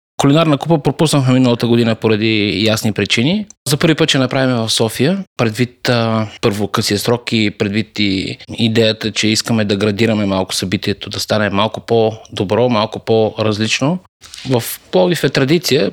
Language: Bulgarian